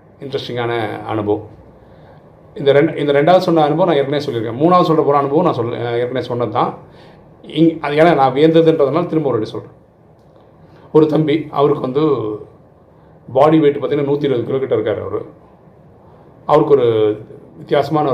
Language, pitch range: Tamil, 115-155 Hz